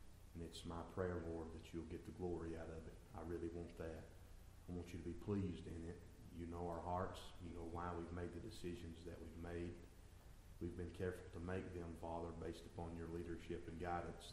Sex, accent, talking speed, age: male, American, 220 wpm, 40-59